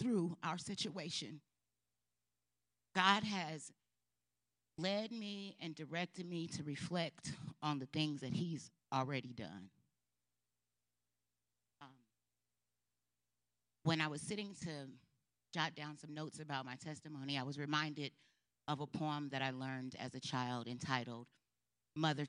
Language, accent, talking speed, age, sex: English, American, 125 wpm, 40-59, female